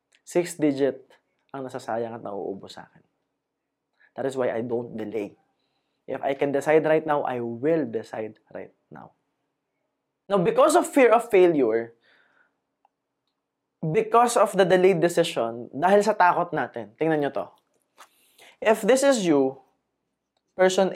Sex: male